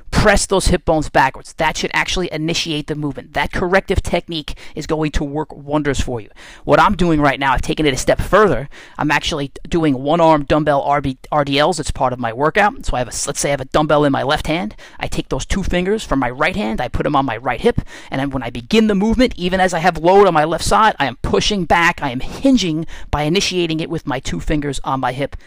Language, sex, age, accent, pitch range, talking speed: English, male, 30-49, American, 145-185 Hz, 250 wpm